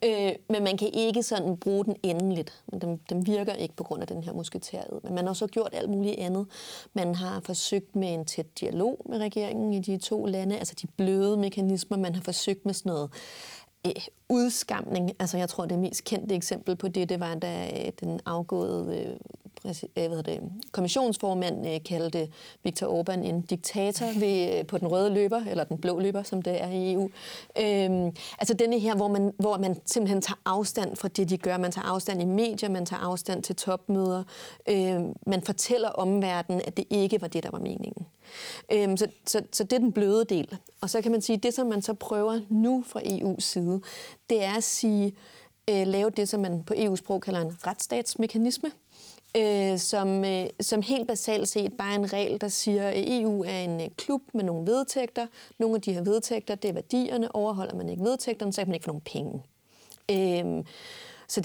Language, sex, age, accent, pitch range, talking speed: Danish, female, 30-49, native, 180-215 Hz, 195 wpm